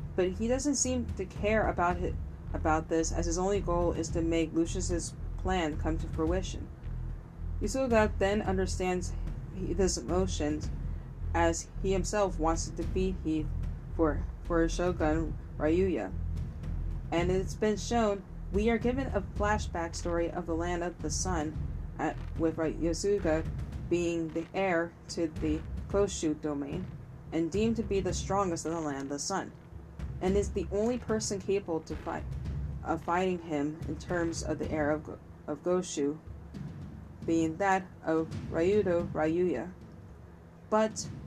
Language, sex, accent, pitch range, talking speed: English, female, American, 145-185 Hz, 150 wpm